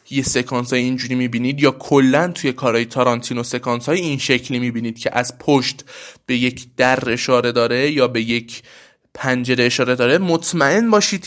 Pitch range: 125-165 Hz